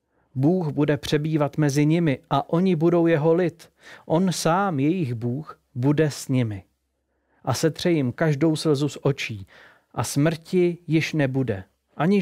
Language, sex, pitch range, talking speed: Czech, male, 120-165 Hz, 140 wpm